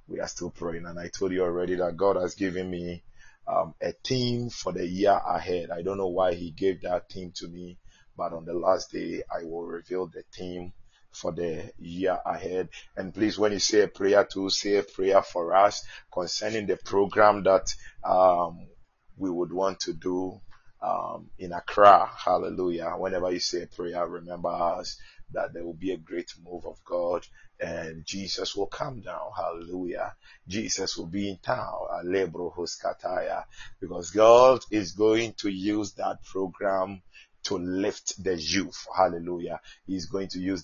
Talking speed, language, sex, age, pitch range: 170 wpm, English, male, 30-49, 90-105 Hz